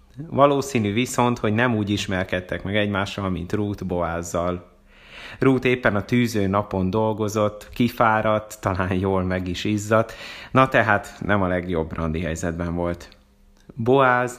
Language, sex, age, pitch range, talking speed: Hungarian, male, 30-49, 90-115 Hz, 135 wpm